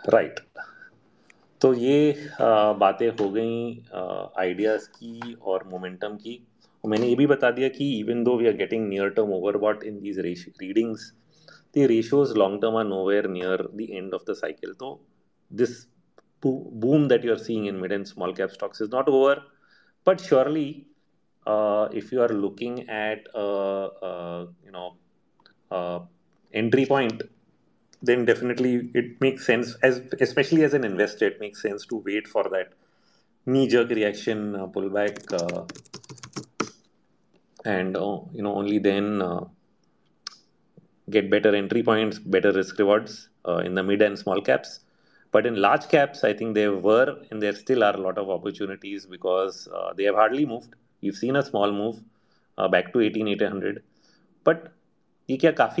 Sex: male